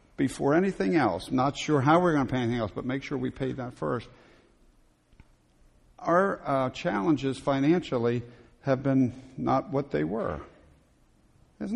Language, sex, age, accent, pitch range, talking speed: English, male, 50-69, American, 105-140 Hz, 155 wpm